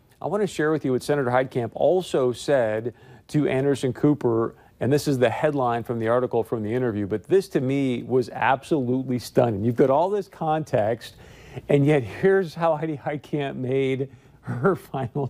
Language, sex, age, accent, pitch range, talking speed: English, male, 50-69, American, 125-150 Hz, 180 wpm